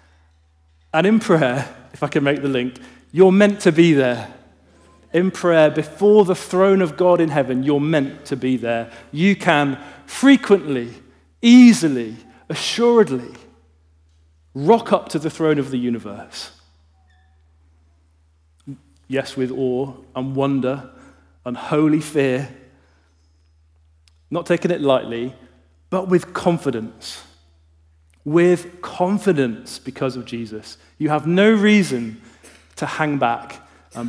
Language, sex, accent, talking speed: English, male, British, 125 wpm